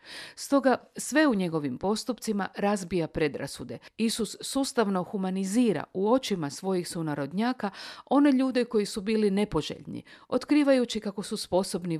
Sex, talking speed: female, 120 wpm